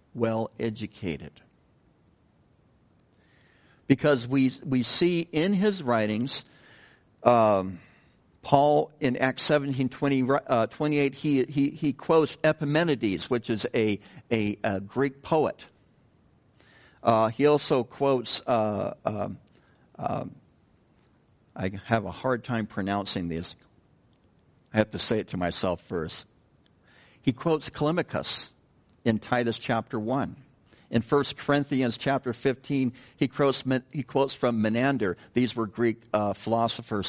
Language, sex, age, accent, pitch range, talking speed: English, male, 60-79, American, 110-140 Hz, 120 wpm